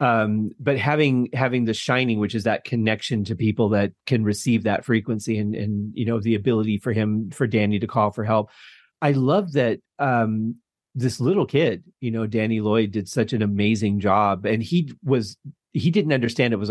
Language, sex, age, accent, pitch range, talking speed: English, male, 40-59, American, 110-130 Hz, 200 wpm